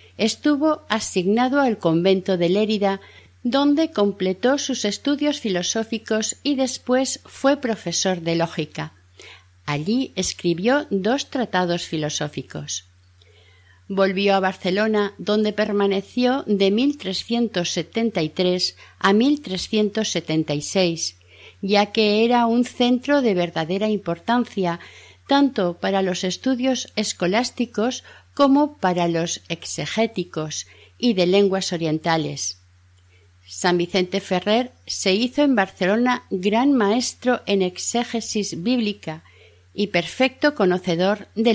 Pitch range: 170-230 Hz